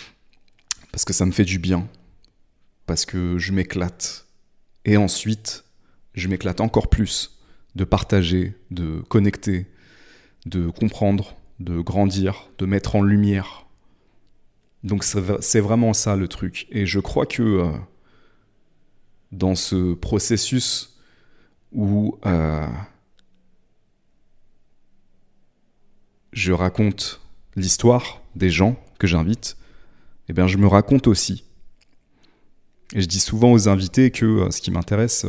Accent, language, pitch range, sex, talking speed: French, French, 90-105 Hz, male, 115 wpm